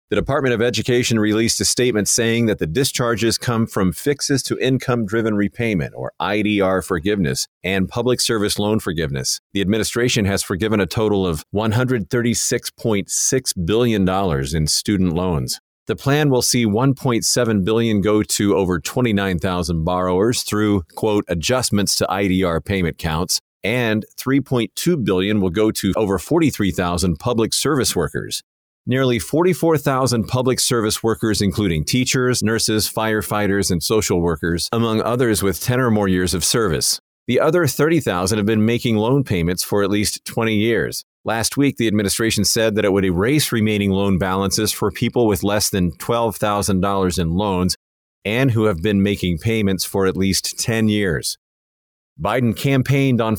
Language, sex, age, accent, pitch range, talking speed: English, male, 40-59, American, 95-120 Hz, 150 wpm